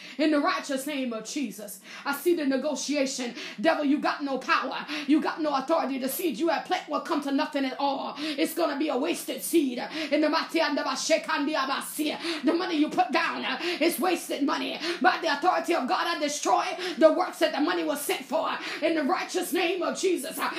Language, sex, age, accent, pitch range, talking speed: English, female, 30-49, American, 295-365 Hz, 195 wpm